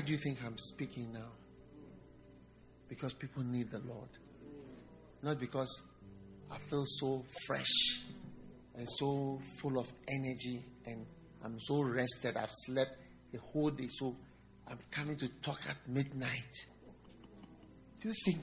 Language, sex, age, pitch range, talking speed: English, male, 50-69, 120-160 Hz, 135 wpm